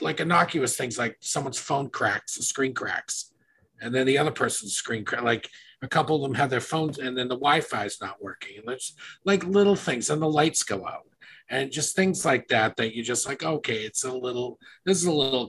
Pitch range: 130-185 Hz